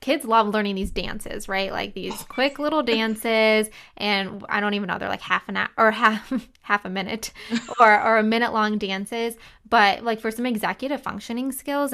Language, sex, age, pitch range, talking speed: English, female, 20-39, 195-230 Hz, 195 wpm